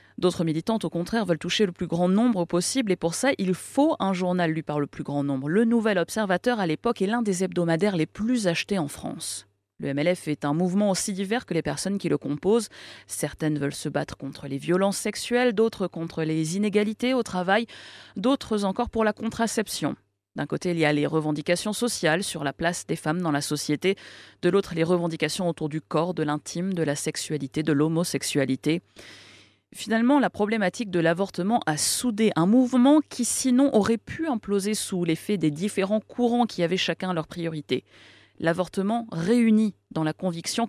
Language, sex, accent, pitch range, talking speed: French, female, French, 150-205 Hz, 190 wpm